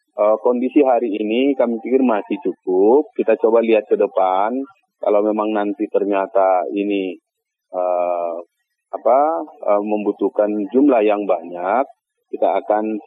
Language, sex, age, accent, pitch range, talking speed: Indonesian, male, 30-49, native, 110-150 Hz, 120 wpm